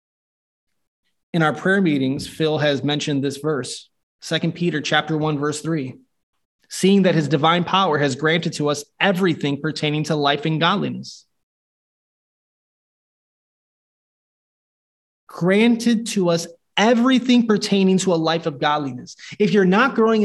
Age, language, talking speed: 20-39, English, 130 wpm